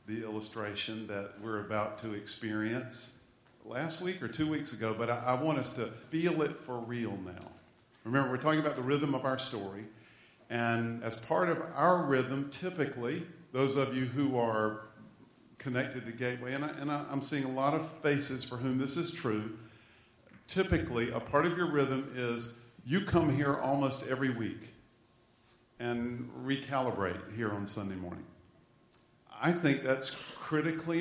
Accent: American